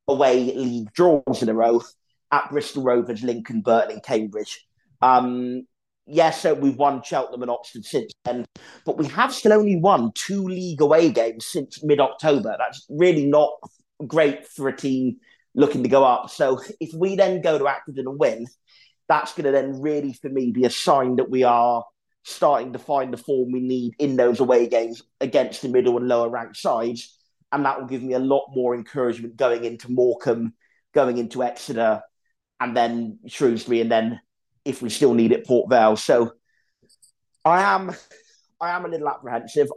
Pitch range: 120-145 Hz